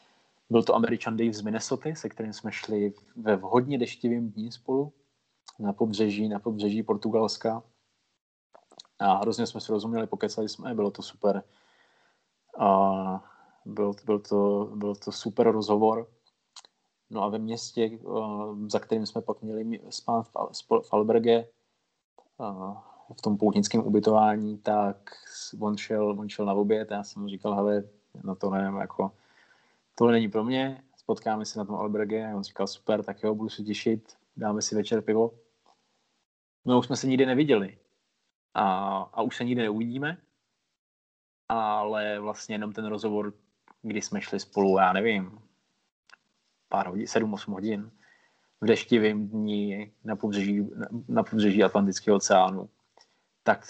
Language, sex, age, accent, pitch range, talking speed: Czech, male, 20-39, native, 105-115 Hz, 140 wpm